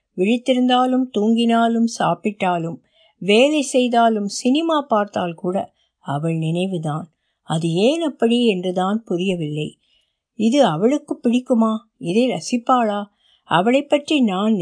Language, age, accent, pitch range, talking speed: Tamil, 60-79, native, 175-240 Hz, 95 wpm